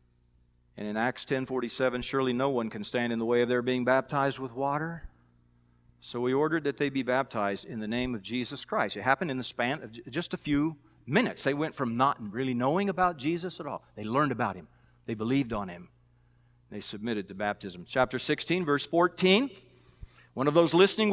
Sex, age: male, 40-59